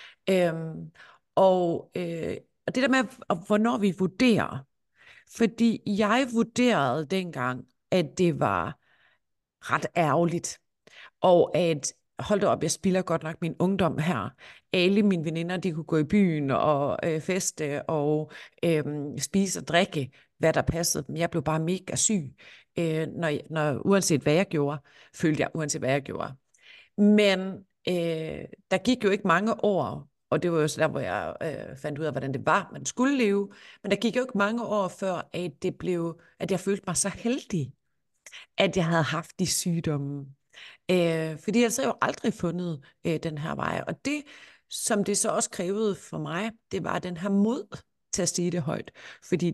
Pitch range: 155-200 Hz